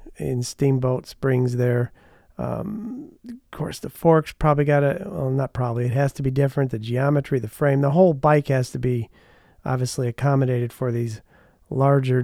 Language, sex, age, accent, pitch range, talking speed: English, male, 40-59, American, 125-150 Hz, 170 wpm